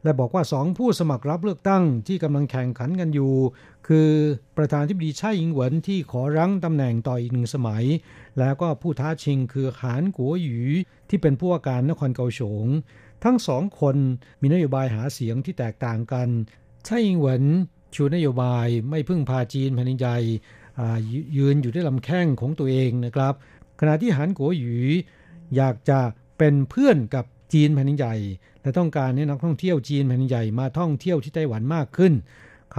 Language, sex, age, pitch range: Thai, male, 60-79, 125-160 Hz